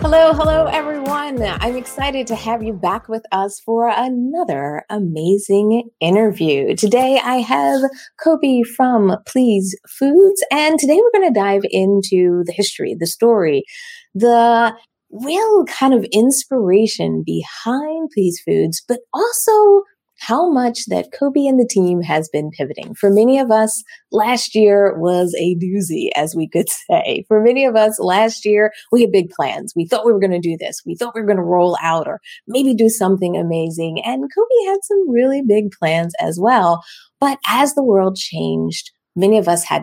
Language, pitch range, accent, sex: English, 180-265 Hz, American, female